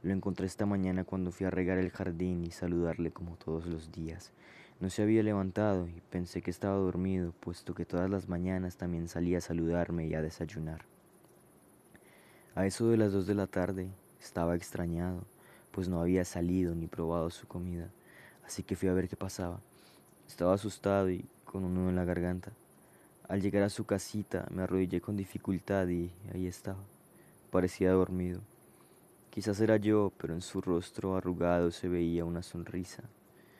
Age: 20-39